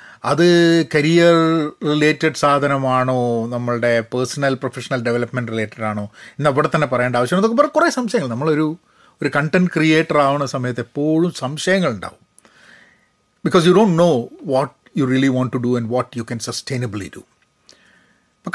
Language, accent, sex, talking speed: Malayalam, native, male, 140 wpm